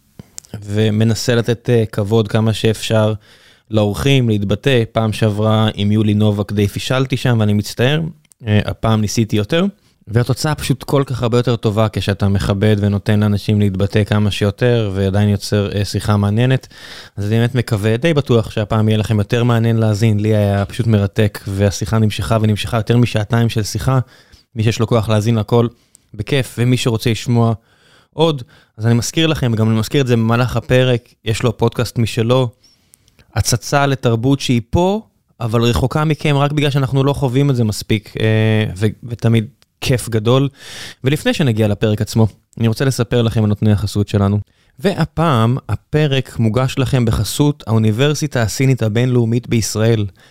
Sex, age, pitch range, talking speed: male, 20-39, 110-125 Hz, 150 wpm